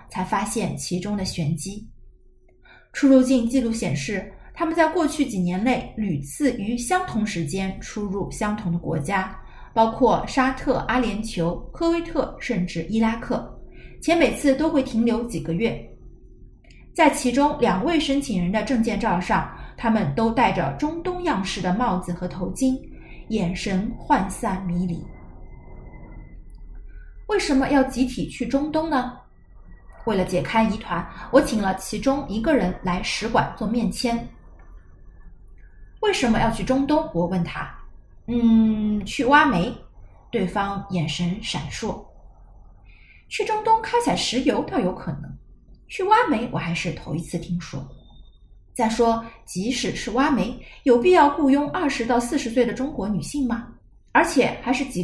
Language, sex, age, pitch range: Chinese, female, 30-49, 180-260 Hz